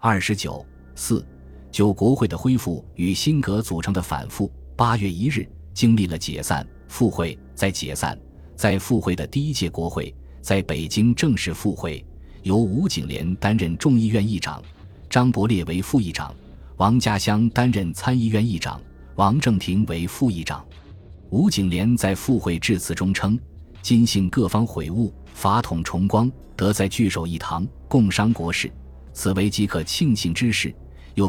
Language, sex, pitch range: Chinese, male, 80-110 Hz